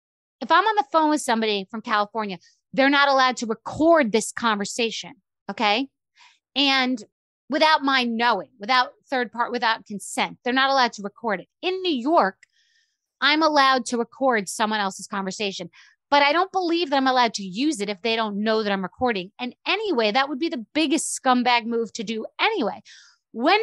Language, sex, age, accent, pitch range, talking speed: English, female, 30-49, American, 250-375 Hz, 185 wpm